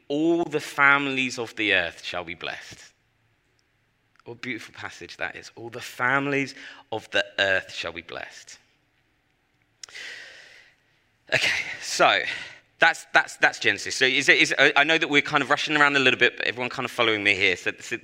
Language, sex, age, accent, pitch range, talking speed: English, male, 30-49, British, 110-145 Hz, 185 wpm